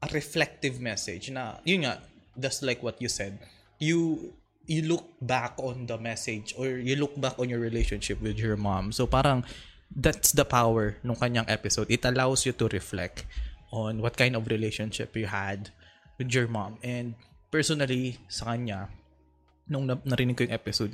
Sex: male